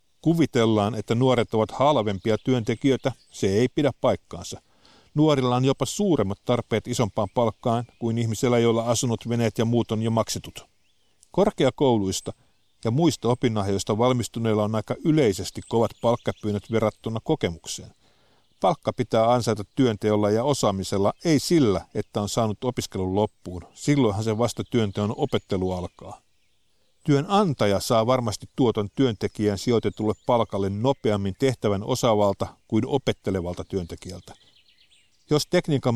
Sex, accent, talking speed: male, native, 120 wpm